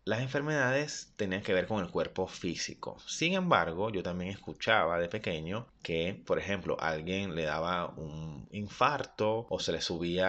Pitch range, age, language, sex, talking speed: 95-125 Hz, 30-49, Spanish, male, 165 wpm